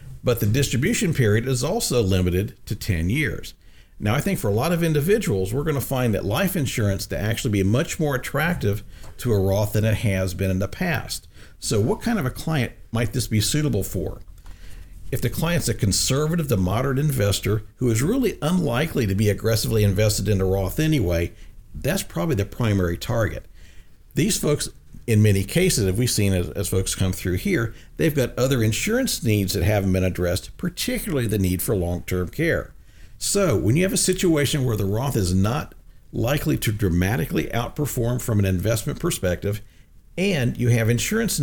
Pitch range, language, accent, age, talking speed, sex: 95-135 Hz, English, American, 50-69, 185 wpm, male